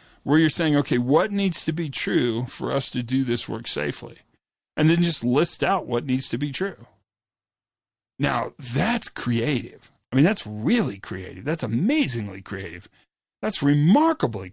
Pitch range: 115-160 Hz